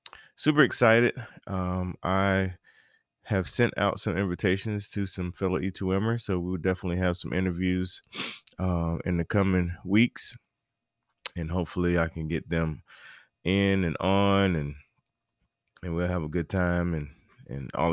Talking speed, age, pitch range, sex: 145 wpm, 20-39, 85-100 Hz, male